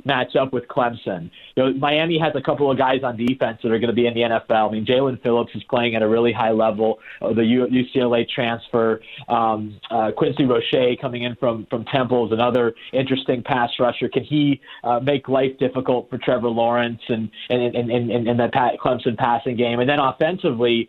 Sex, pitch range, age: male, 120-140 Hz, 30-49